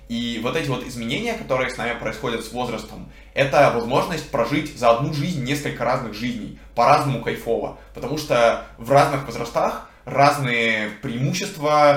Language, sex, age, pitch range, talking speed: Russian, male, 20-39, 110-135 Hz, 145 wpm